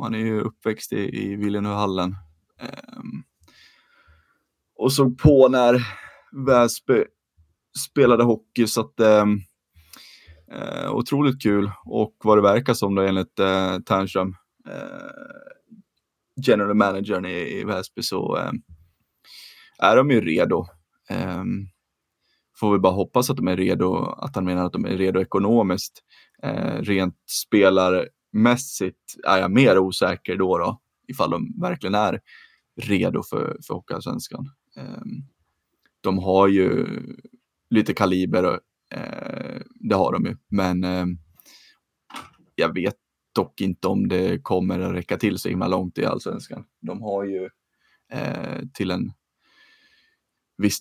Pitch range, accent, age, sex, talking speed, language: 95-115 Hz, native, 20-39, male, 135 wpm, Swedish